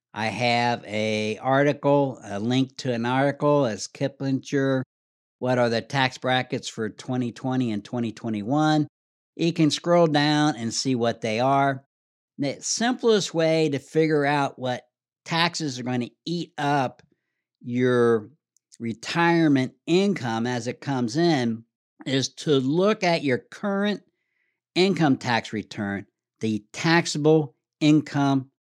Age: 60-79